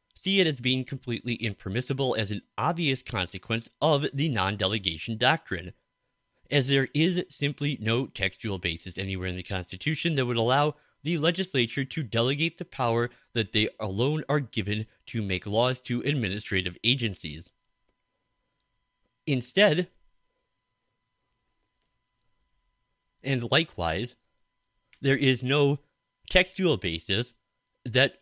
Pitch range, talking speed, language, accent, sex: 105-140 Hz, 115 wpm, English, American, male